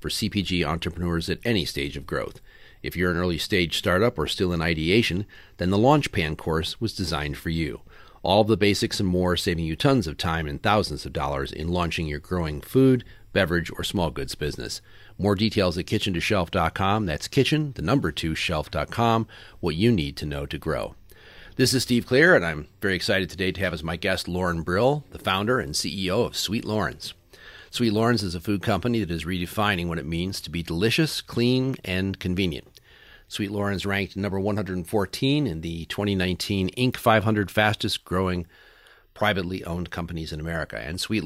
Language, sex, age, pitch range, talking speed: English, male, 40-59, 85-105 Hz, 185 wpm